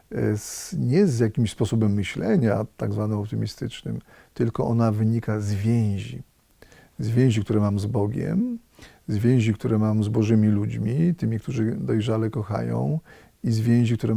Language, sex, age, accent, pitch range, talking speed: Polish, male, 40-59, native, 105-120 Hz, 145 wpm